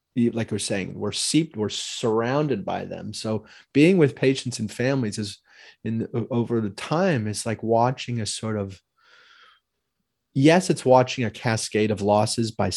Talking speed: 165 wpm